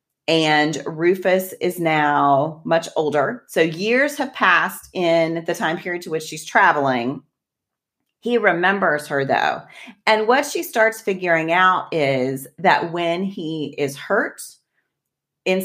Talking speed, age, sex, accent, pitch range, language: 135 wpm, 30-49, female, American, 160-210 Hz, English